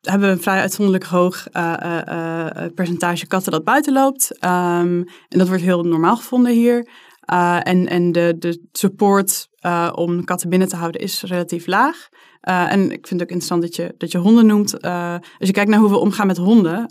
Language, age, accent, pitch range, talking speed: Dutch, 20-39, Dutch, 175-220 Hz, 205 wpm